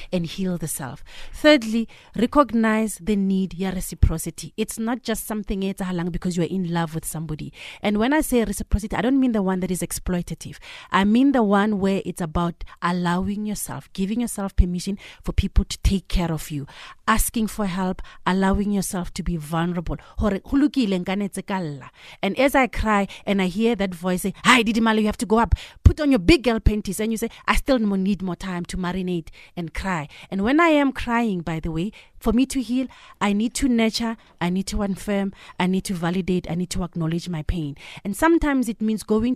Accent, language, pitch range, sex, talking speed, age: South African, English, 175-220 Hz, female, 200 wpm, 30-49